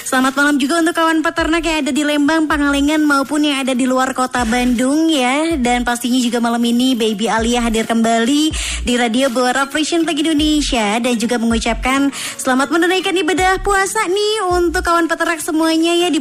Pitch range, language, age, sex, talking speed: 240-310 Hz, Indonesian, 20-39, male, 180 wpm